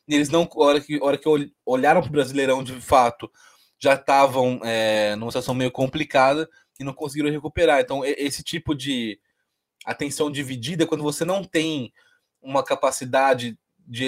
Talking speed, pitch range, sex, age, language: 155 wpm, 130-165 Hz, male, 20-39, Portuguese